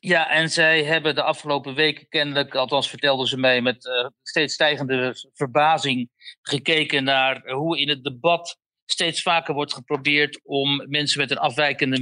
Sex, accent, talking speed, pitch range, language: male, Dutch, 160 wpm, 135-165 Hz, Dutch